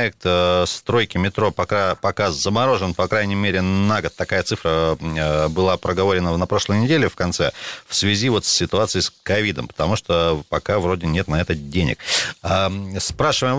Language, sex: Russian, male